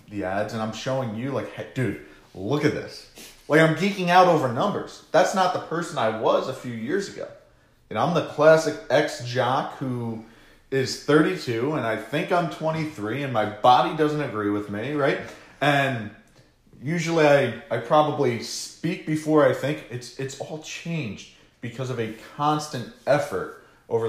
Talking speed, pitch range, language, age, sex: 175 wpm, 105-150 Hz, English, 40-59, male